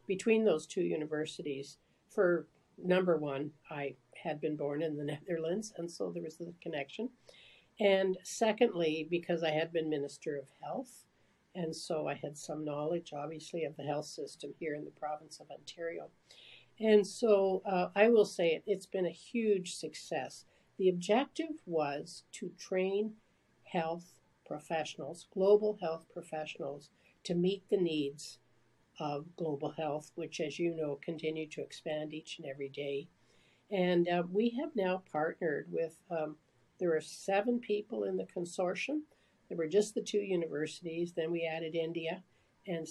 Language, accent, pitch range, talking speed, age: English, American, 155-185 Hz, 155 wpm, 60-79